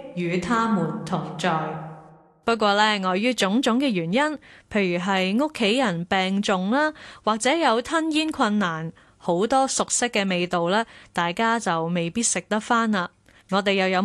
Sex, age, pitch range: female, 20-39, 185-255 Hz